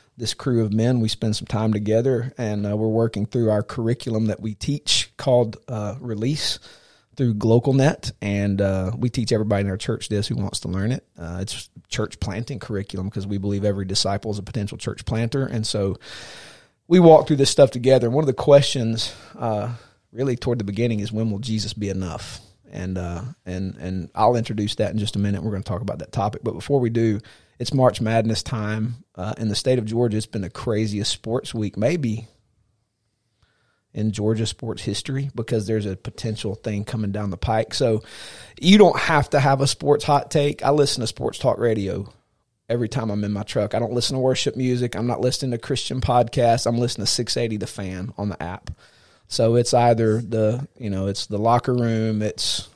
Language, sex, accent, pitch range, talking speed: English, male, American, 105-125 Hz, 205 wpm